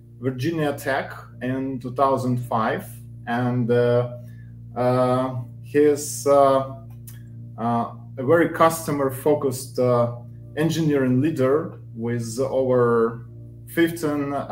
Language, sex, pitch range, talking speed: English, male, 115-145 Hz, 80 wpm